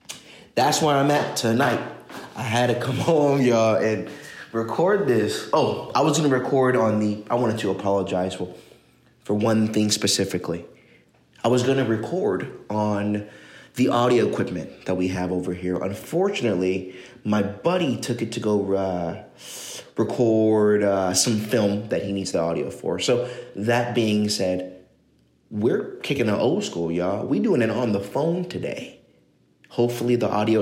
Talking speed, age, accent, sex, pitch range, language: 165 wpm, 20-39, American, male, 95-120 Hz, English